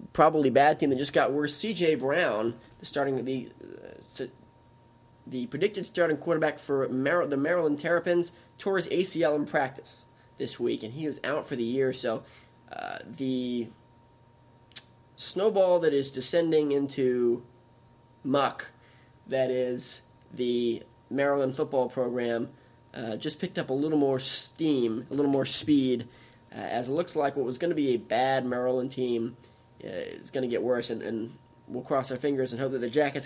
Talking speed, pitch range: 170 wpm, 120-145 Hz